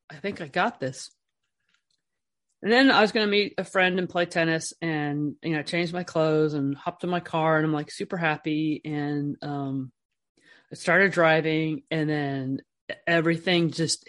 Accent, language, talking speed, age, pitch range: American, English, 180 wpm, 30-49, 145-175 Hz